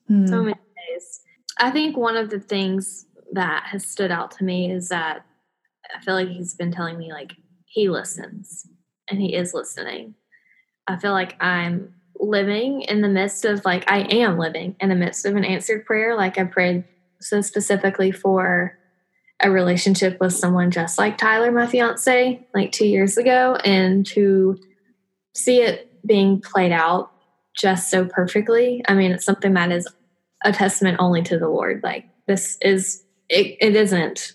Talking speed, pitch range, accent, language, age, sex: 170 wpm, 180-210 Hz, American, English, 10-29, female